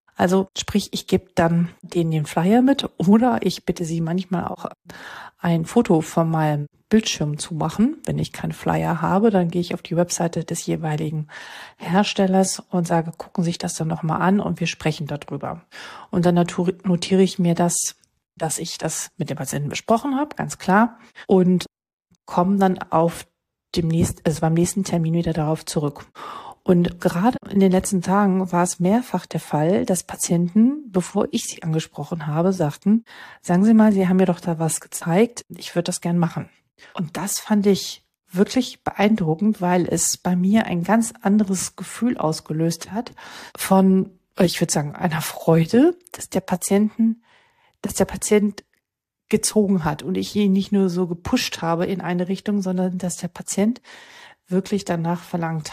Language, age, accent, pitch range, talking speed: German, 40-59, German, 170-205 Hz, 170 wpm